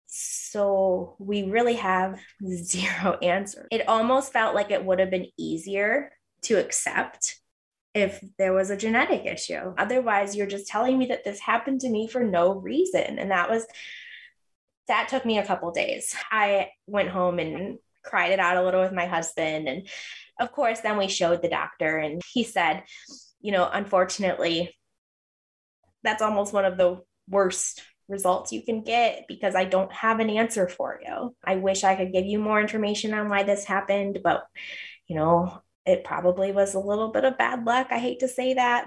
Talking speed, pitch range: 185 wpm, 185-235 Hz